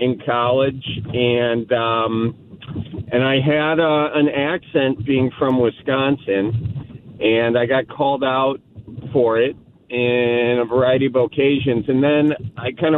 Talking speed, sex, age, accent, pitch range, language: 135 wpm, male, 40-59, American, 120-140 Hz, English